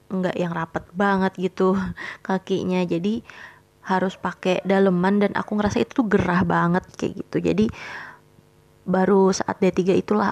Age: 20-39